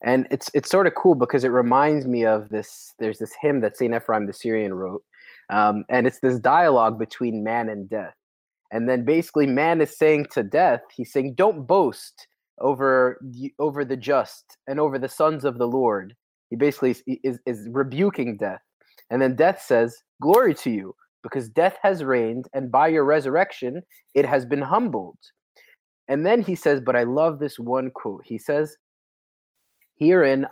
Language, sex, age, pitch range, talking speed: English, male, 20-39, 120-155 Hz, 185 wpm